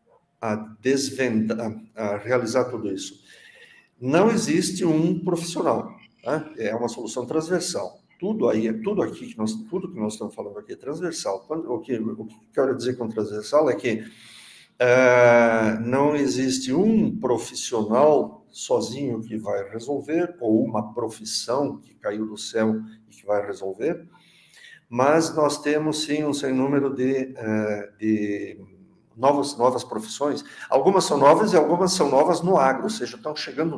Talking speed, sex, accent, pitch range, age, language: 155 wpm, male, Brazilian, 115-170 Hz, 50-69, Portuguese